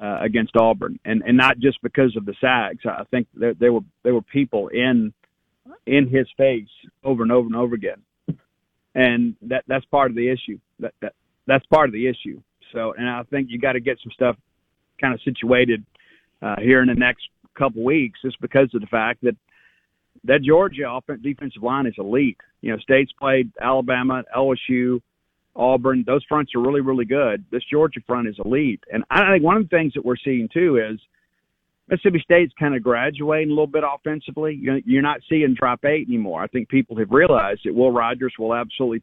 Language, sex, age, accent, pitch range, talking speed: English, male, 50-69, American, 120-135 Hz, 200 wpm